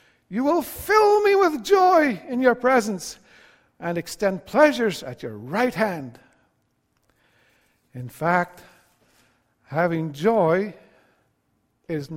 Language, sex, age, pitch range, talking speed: English, male, 60-79, 165-245 Hz, 105 wpm